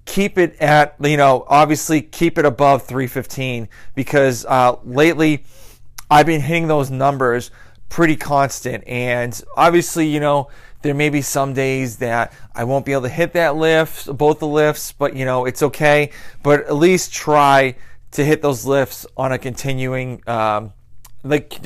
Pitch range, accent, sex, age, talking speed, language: 120-145 Hz, American, male, 30-49, 165 wpm, English